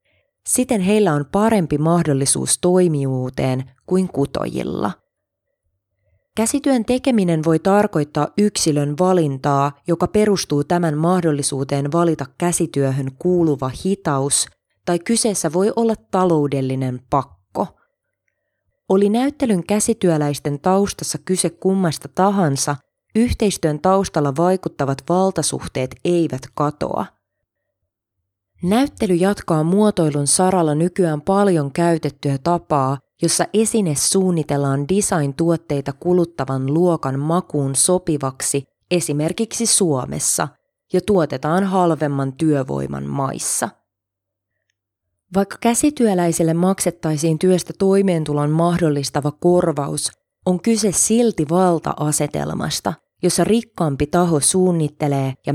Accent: native